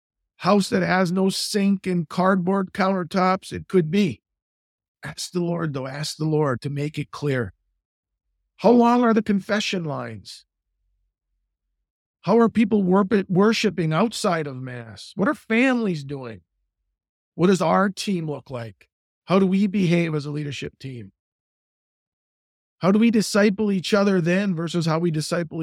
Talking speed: 150 wpm